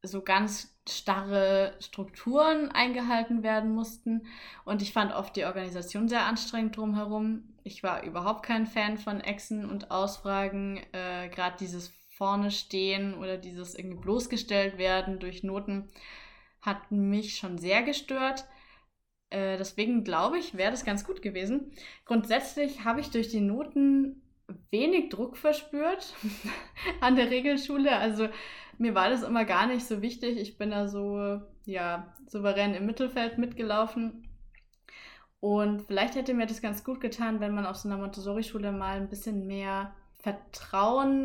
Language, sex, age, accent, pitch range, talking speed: German, female, 20-39, German, 195-245 Hz, 145 wpm